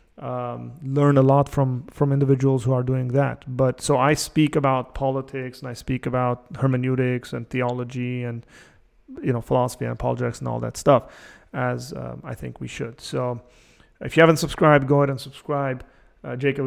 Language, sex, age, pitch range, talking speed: English, male, 30-49, 125-145 Hz, 185 wpm